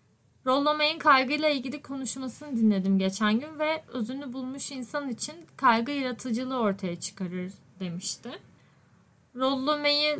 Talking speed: 120 wpm